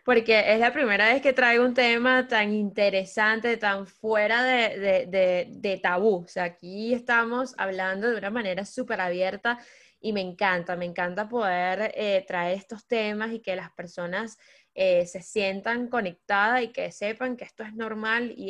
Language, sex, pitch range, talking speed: Spanish, female, 195-240 Hz, 175 wpm